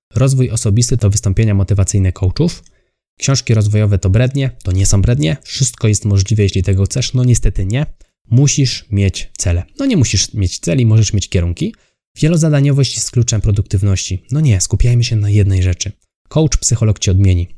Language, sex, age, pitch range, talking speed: Polish, male, 20-39, 95-120 Hz, 165 wpm